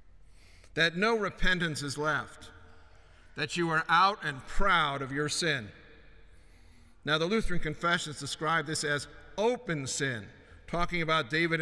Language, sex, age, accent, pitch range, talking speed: English, male, 50-69, American, 125-165 Hz, 135 wpm